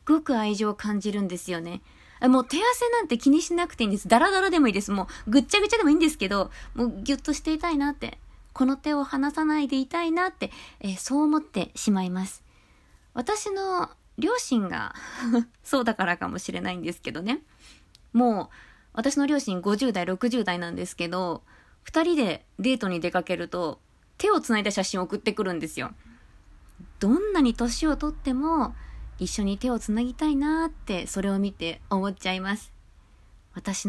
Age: 20-39